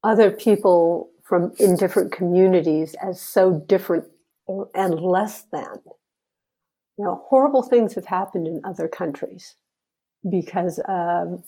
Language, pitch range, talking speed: English, 180-210 Hz, 120 wpm